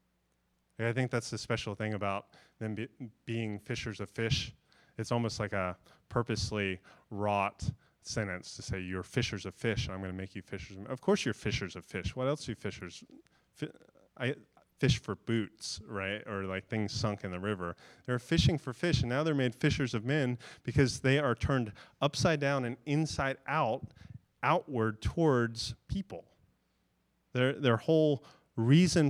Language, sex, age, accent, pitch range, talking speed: English, male, 30-49, American, 100-130 Hz, 175 wpm